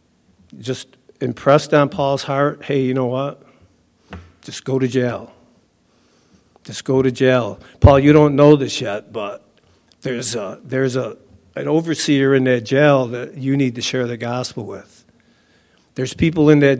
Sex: male